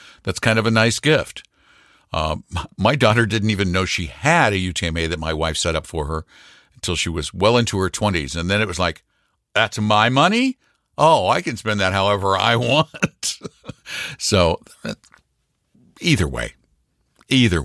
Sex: male